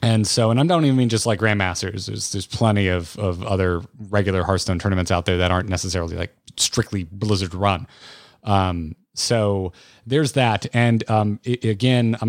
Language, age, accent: English, 30-49, American